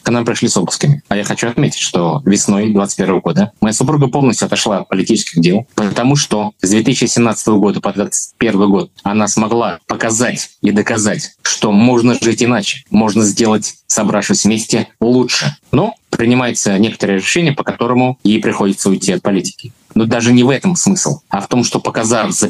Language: Russian